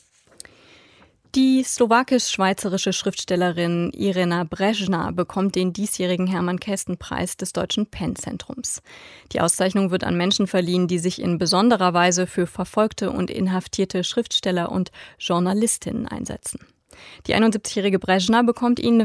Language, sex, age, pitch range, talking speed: German, female, 20-39, 180-210 Hz, 115 wpm